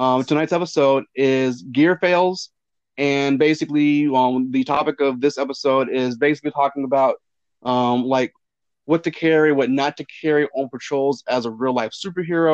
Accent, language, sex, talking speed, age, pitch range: American, English, male, 160 wpm, 30-49, 125-150 Hz